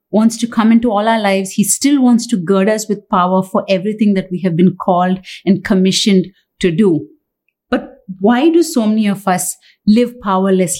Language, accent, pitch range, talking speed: English, Indian, 185-235 Hz, 195 wpm